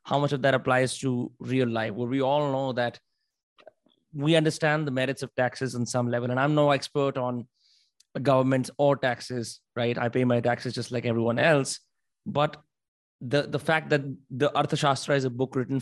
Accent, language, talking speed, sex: native, Hindi, 185 wpm, male